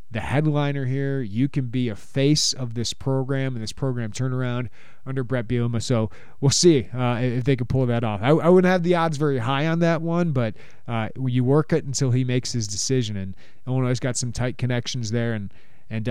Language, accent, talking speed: English, American, 220 wpm